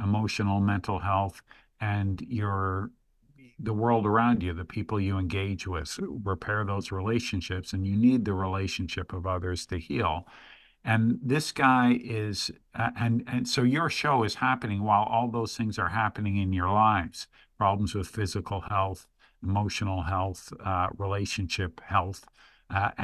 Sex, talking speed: male, 150 wpm